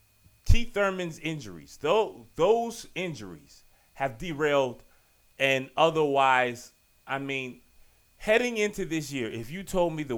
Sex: male